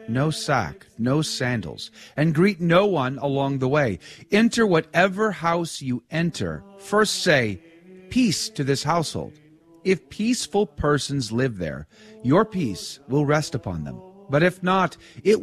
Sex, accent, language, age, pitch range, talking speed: male, American, English, 40-59, 120-185 Hz, 145 wpm